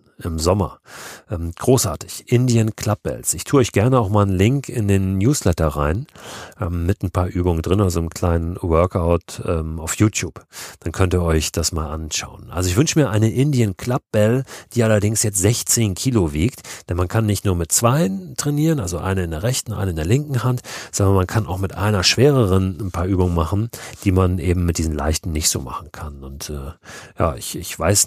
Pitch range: 85-110 Hz